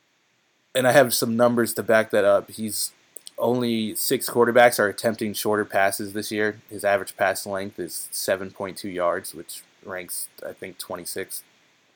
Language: English